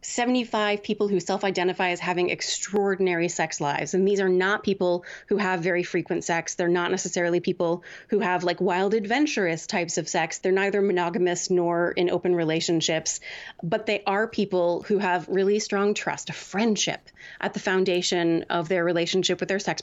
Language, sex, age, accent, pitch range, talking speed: English, female, 30-49, American, 175-205 Hz, 175 wpm